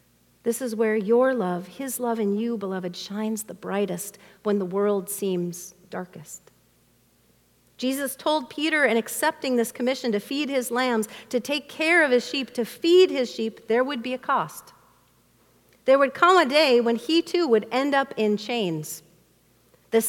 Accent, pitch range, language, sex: American, 205-260 Hz, English, female